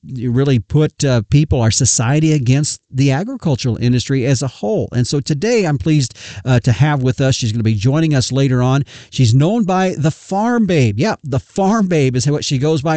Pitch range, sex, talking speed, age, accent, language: 120-150 Hz, male, 205 wpm, 50-69, American, English